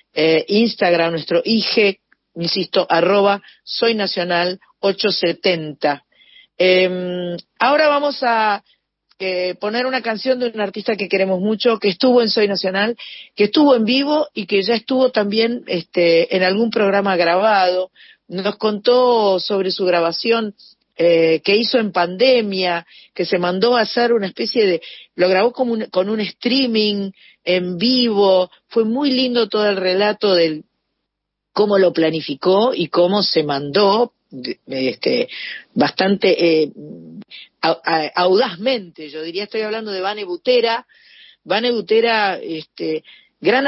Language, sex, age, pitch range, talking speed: Spanish, female, 40-59, 180-230 Hz, 130 wpm